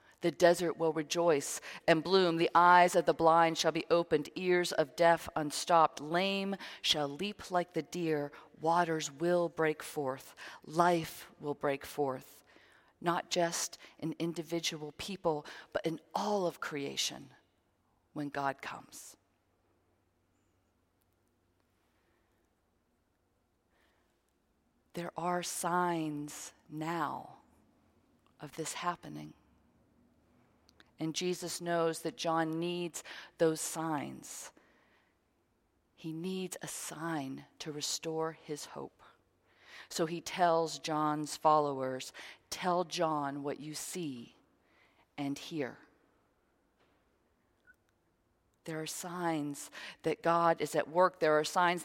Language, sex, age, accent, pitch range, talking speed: English, female, 40-59, American, 140-170 Hz, 105 wpm